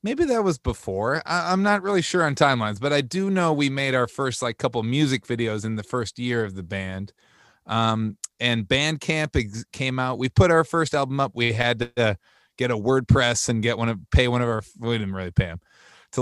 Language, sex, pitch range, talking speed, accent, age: English, male, 110-135 Hz, 225 wpm, American, 30-49